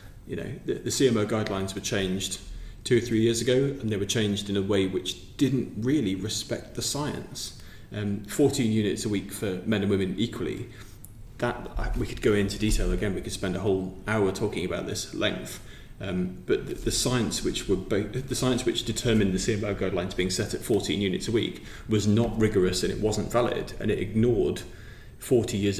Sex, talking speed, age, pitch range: male, 200 wpm, 30-49, 100-115 Hz